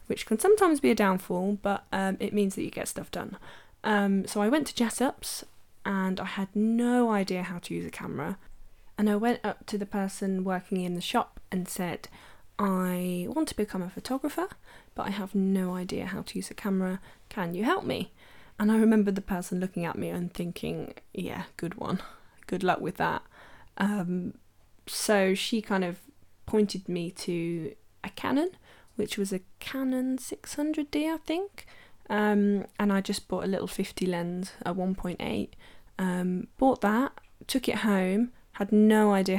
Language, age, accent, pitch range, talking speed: English, 10-29, British, 180-215 Hz, 180 wpm